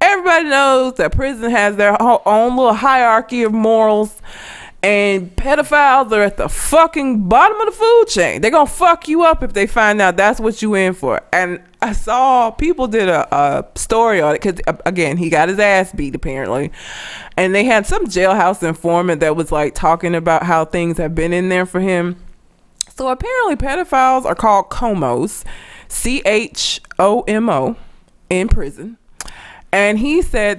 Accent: American